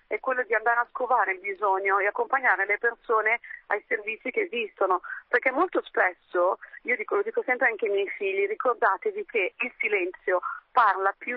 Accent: native